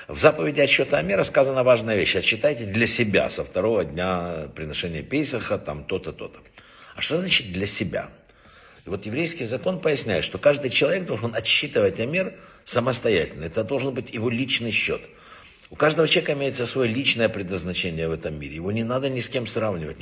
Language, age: Russian, 60-79